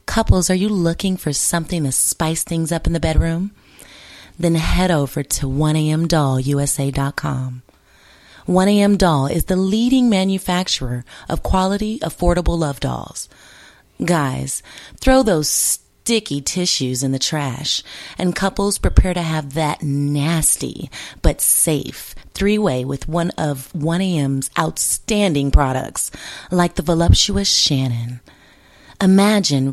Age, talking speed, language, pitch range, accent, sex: 30-49, 115 wpm, English, 140-180 Hz, American, female